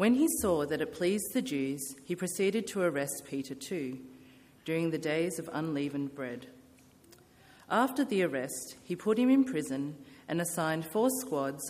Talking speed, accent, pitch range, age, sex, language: 165 wpm, Australian, 135-180 Hz, 40-59, female, English